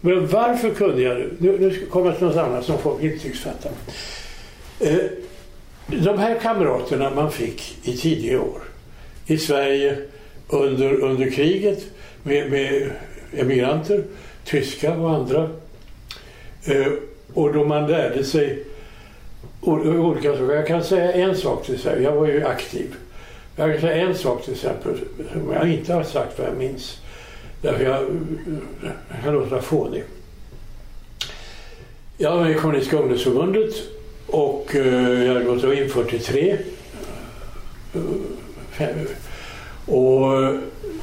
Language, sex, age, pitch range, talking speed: Swedish, male, 60-79, 135-180 Hz, 130 wpm